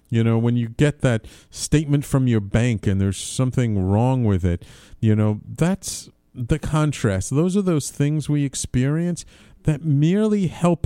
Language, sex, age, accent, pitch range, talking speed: English, male, 50-69, American, 105-150 Hz, 165 wpm